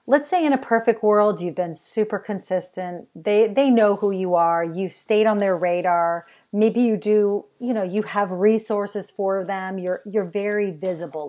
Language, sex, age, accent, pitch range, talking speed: English, female, 40-59, American, 185-235 Hz, 185 wpm